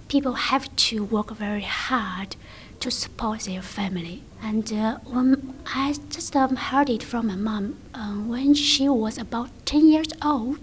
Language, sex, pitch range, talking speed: English, female, 205-255 Hz, 160 wpm